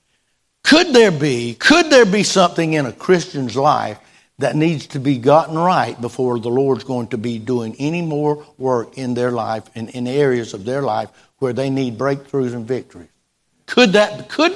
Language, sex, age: English, male, 60-79